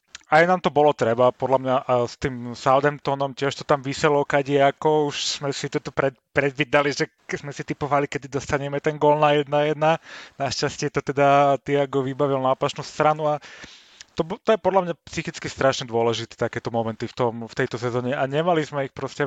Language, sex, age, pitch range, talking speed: Slovak, male, 30-49, 130-155 Hz, 195 wpm